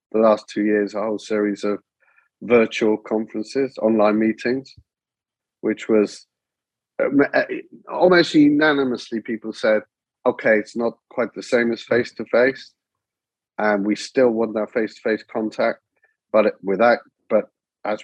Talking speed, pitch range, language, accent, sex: 125 wpm, 95-115 Hz, English, British, male